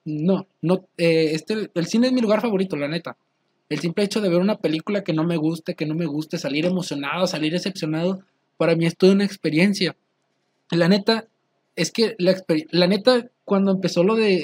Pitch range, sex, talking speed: 150-185 Hz, male, 200 wpm